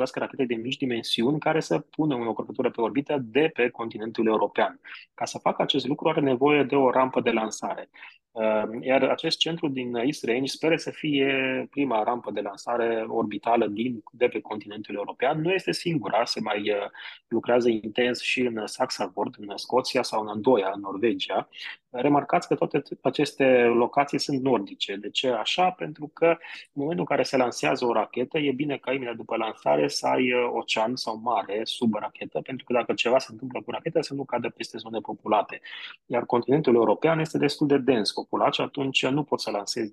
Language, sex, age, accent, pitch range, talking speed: Romanian, male, 20-39, native, 115-140 Hz, 185 wpm